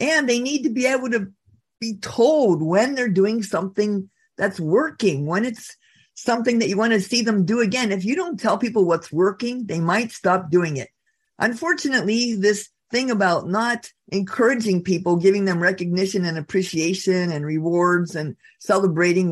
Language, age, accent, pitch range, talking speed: English, 50-69, American, 180-235 Hz, 170 wpm